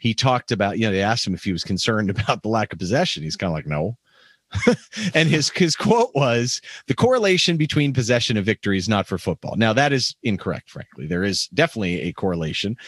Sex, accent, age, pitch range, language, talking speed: male, American, 40-59, 115-175 Hz, English, 220 wpm